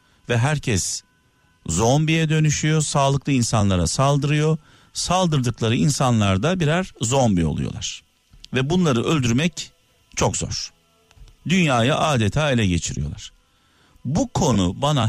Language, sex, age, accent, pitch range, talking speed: Turkish, male, 50-69, native, 100-140 Hz, 100 wpm